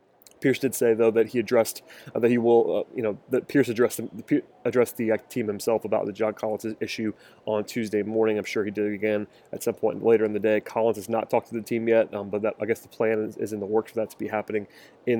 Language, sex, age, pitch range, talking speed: English, male, 20-39, 110-115 Hz, 270 wpm